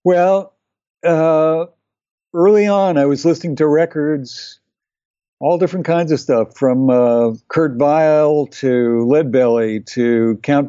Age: 60-79